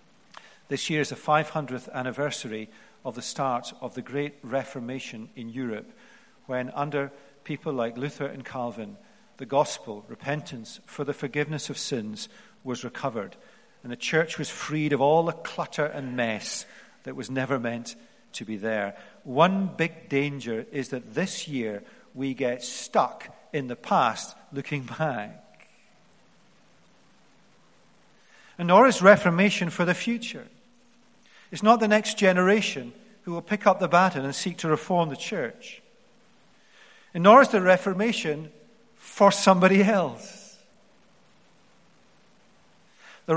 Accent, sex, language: British, male, English